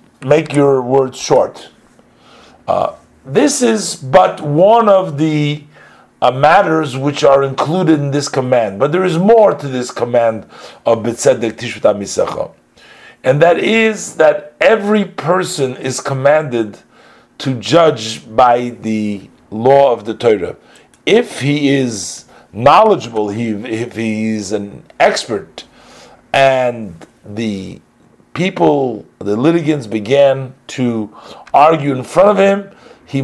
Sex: male